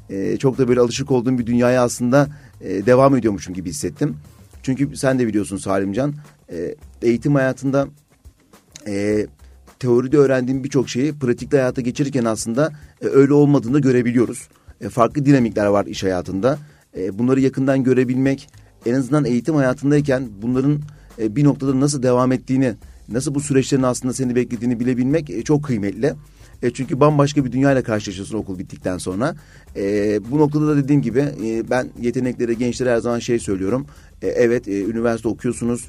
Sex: male